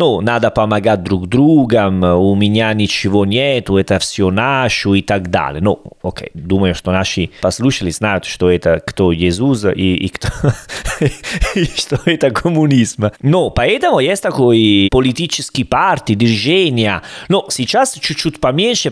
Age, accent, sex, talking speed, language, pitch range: 30-49, Italian, male, 135 wpm, Russian, 100-130 Hz